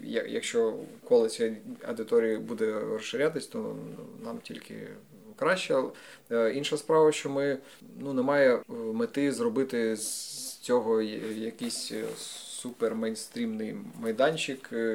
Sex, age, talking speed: male, 20-39, 90 wpm